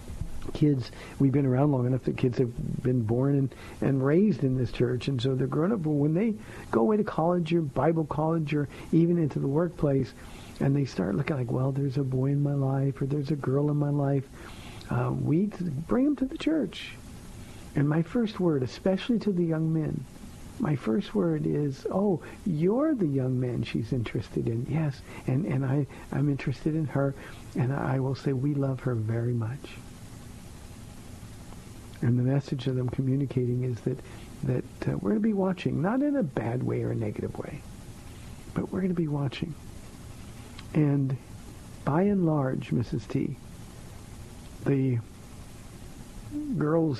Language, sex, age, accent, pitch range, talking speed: English, male, 60-79, American, 120-155 Hz, 175 wpm